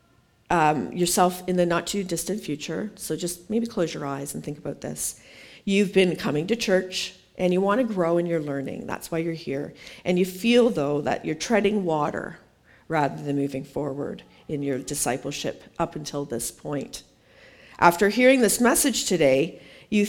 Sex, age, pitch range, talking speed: female, 50-69, 155-205 Hz, 180 wpm